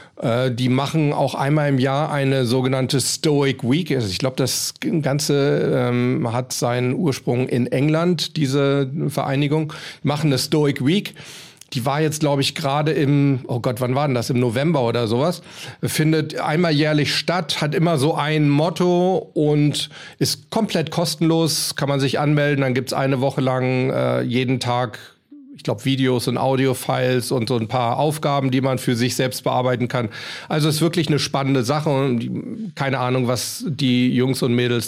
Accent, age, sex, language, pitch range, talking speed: German, 40-59, male, German, 125-155 Hz, 175 wpm